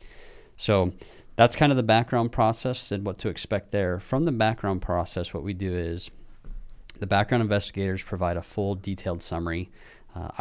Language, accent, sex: English, American, male